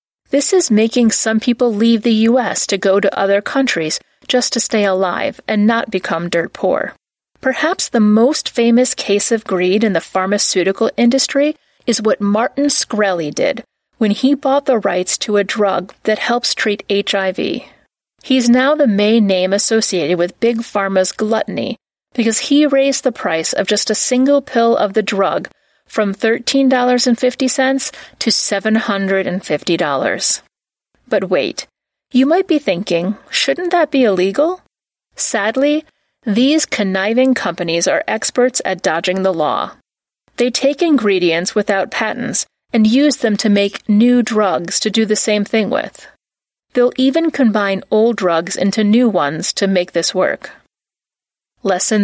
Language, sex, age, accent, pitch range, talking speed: English, female, 40-59, American, 195-255 Hz, 150 wpm